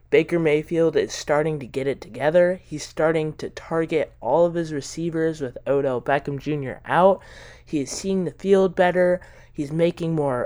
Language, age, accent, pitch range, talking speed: English, 20-39, American, 130-170 Hz, 170 wpm